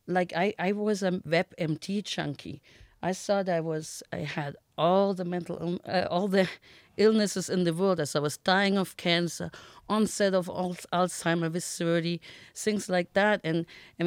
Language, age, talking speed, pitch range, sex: English, 50-69, 175 wpm, 165-195 Hz, female